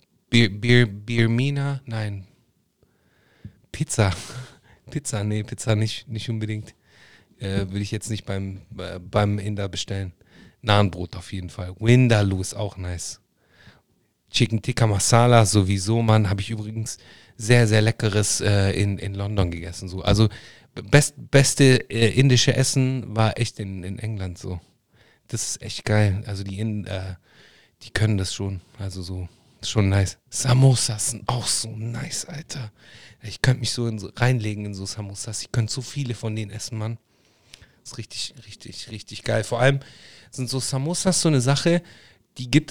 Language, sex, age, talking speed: German, male, 30-49, 155 wpm